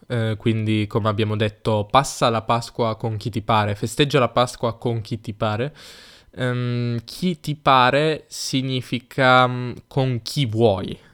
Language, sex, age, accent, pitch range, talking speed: Italian, male, 10-29, native, 105-125 Hz, 150 wpm